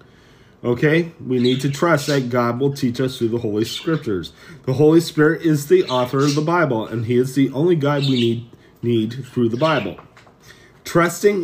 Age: 30-49